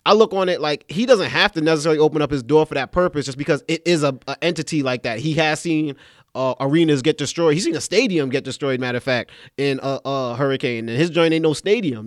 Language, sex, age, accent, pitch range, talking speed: English, male, 30-49, American, 125-155 Hz, 260 wpm